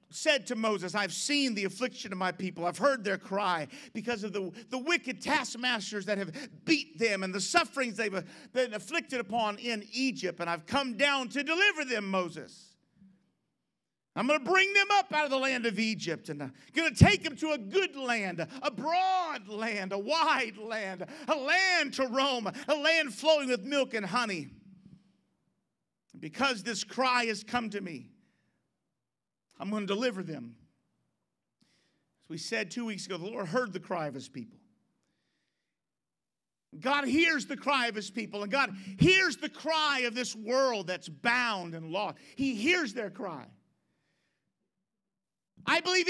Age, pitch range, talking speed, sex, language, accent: 50-69, 200-305 Hz, 170 wpm, male, English, American